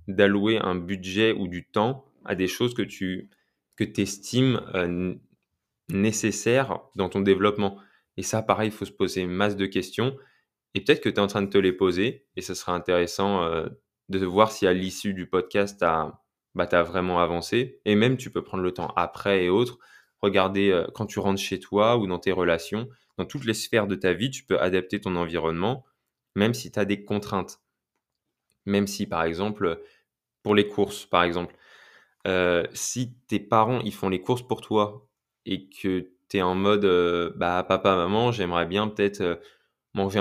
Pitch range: 95-110 Hz